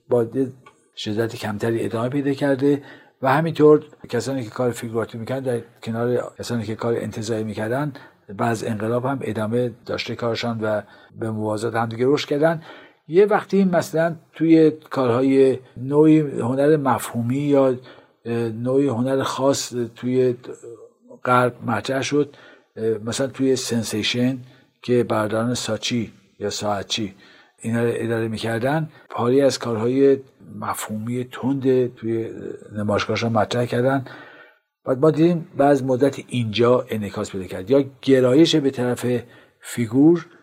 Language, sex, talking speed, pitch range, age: Persian, male, 125 wpm, 115-135 Hz, 50-69